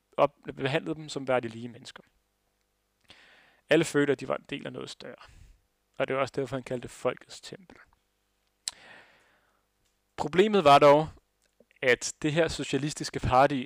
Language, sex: Danish, male